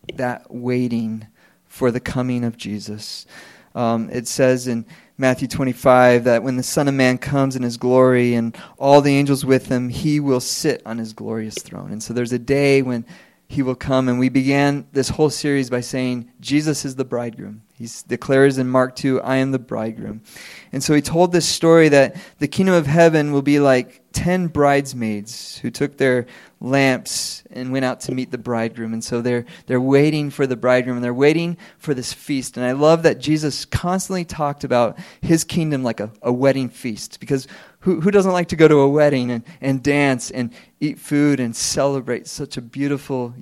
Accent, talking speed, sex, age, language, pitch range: American, 200 wpm, male, 20-39, English, 120-145 Hz